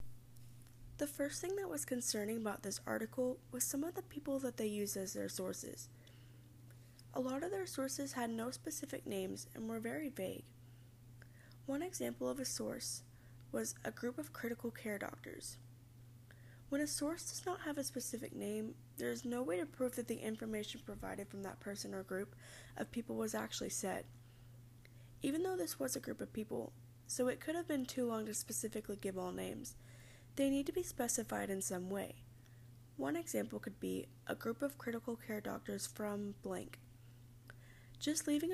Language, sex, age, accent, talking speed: English, female, 10-29, American, 180 wpm